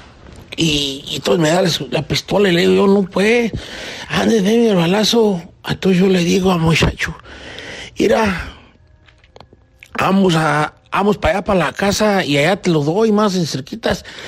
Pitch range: 155-200 Hz